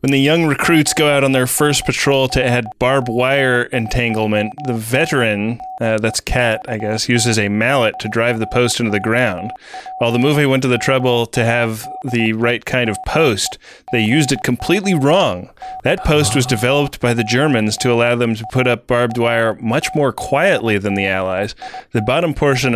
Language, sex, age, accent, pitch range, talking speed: English, male, 20-39, American, 110-135 Hz, 200 wpm